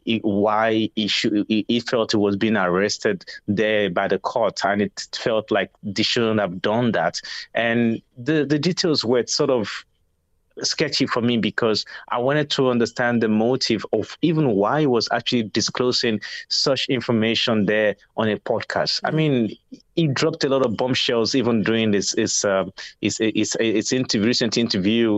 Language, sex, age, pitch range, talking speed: English, male, 30-49, 105-120 Hz, 160 wpm